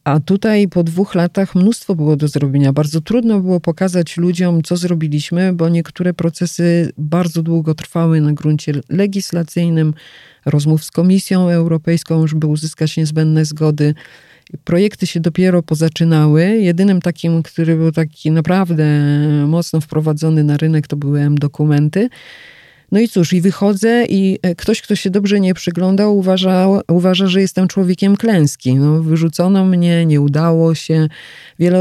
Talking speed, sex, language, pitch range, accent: 140 wpm, female, Polish, 155-185 Hz, native